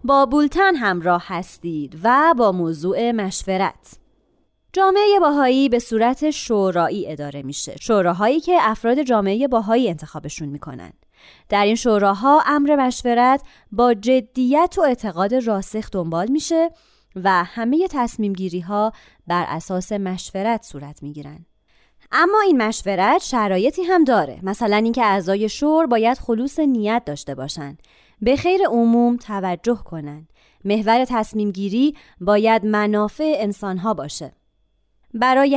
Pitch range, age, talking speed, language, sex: 195-280 Hz, 20-39, 125 wpm, Persian, female